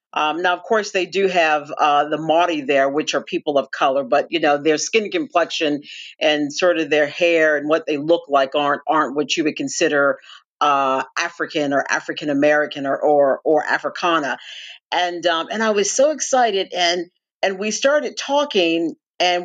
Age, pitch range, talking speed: 40-59, 150-195 Hz, 185 wpm